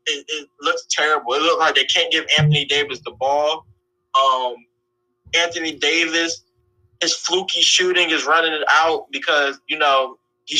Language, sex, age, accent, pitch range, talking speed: English, male, 20-39, American, 140-205 Hz, 160 wpm